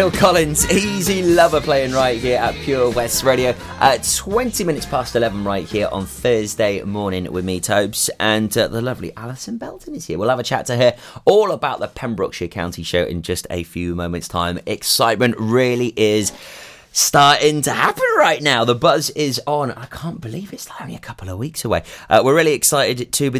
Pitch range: 95-135 Hz